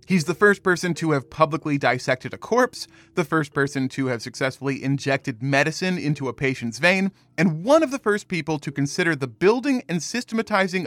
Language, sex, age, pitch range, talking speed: English, male, 30-49, 135-180 Hz, 190 wpm